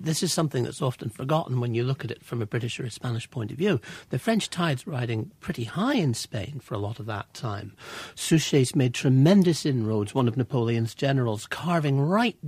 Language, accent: English, British